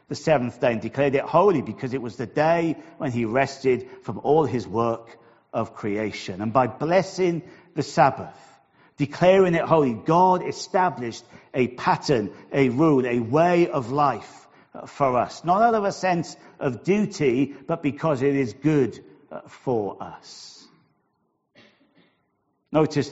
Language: English